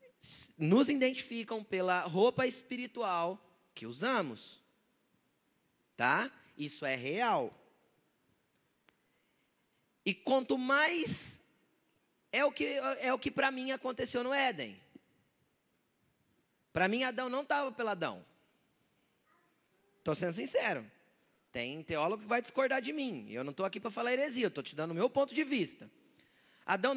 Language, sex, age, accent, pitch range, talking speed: Portuguese, male, 20-39, Brazilian, 195-265 Hz, 120 wpm